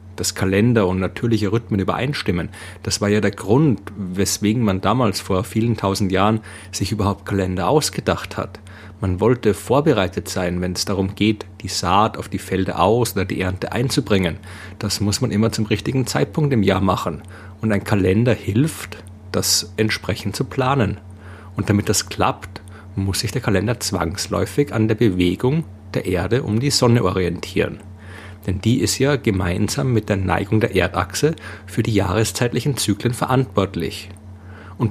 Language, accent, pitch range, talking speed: German, German, 95-115 Hz, 160 wpm